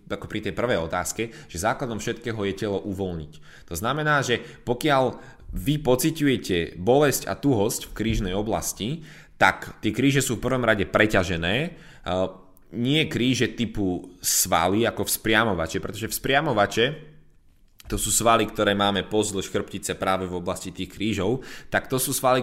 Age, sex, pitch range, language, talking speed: 20-39, male, 95-120 Hz, Slovak, 145 wpm